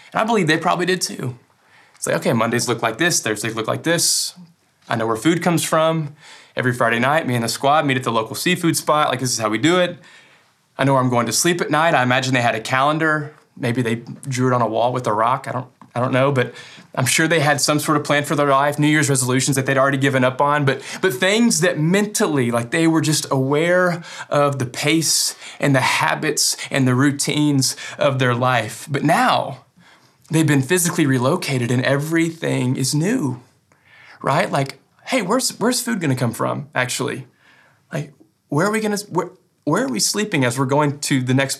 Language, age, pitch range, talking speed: English, 20-39, 130-165 Hz, 225 wpm